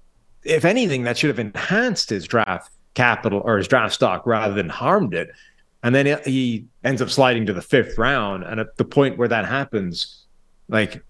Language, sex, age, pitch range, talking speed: English, male, 30-49, 95-130 Hz, 190 wpm